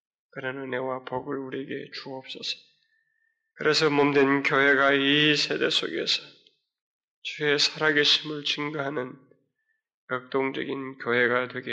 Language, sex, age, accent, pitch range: Korean, male, 20-39, native, 135-155 Hz